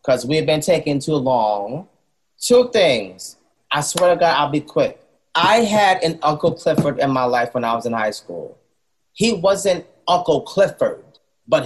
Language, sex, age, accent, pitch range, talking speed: English, male, 30-49, American, 120-150 Hz, 180 wpm